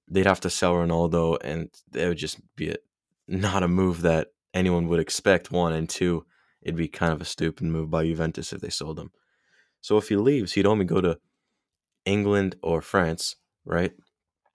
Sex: male